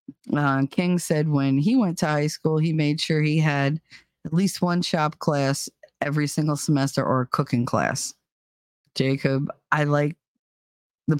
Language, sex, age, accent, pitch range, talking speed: English, female, 40-59, American, 140-180 Hz, 160 wpm